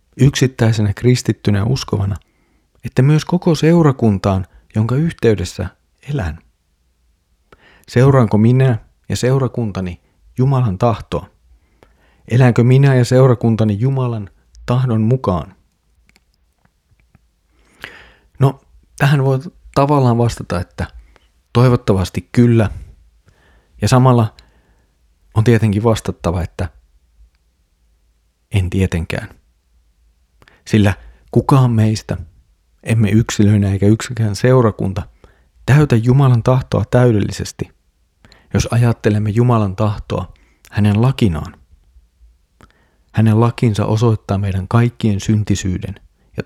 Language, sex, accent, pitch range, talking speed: Finnish, male, native, 80-120 Hz, 85 wpm